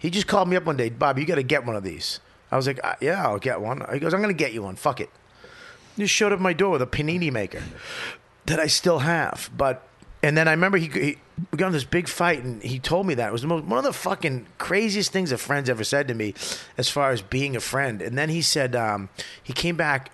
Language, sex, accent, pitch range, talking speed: English, male, American, 120-180 Hz, 285 wpm